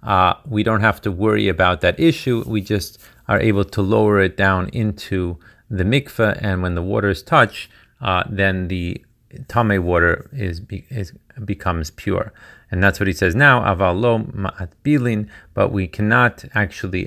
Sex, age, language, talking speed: male, 40-59, Hebrew, 160 wpm